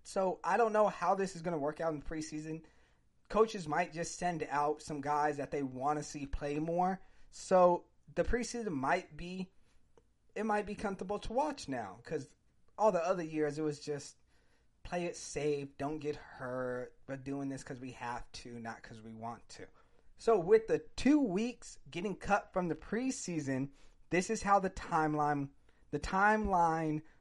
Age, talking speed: 20-39, 180 wpm